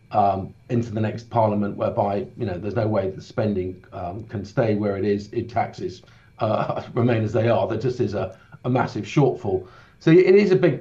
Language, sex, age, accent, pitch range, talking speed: English, male, 40-59, British, 110-135 Hz, 210 wpm